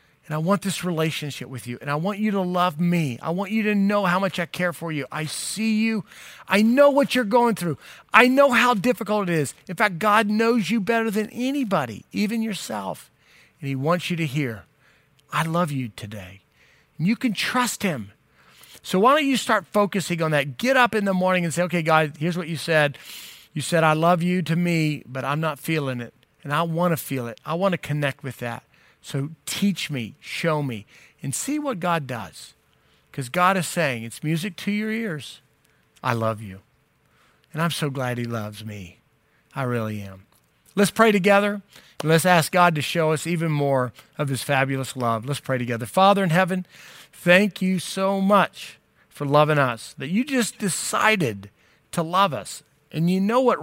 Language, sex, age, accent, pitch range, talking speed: English, male, 40-59, American, 140-200 Hz, 205 wpm